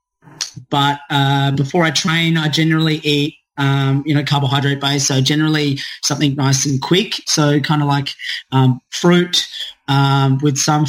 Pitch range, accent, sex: 135-150 Hz, Australian, male